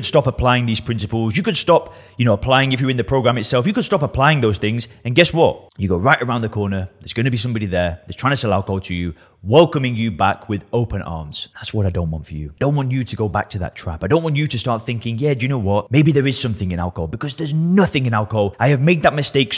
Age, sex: 30-49, male